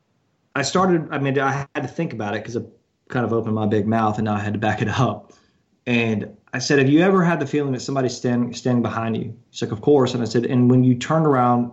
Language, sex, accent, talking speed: English, male, American, 275 wpm